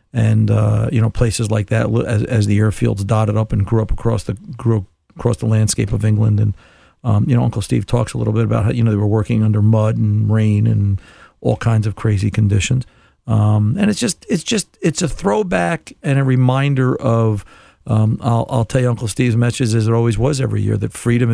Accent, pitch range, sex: American, 105-120 Hz, male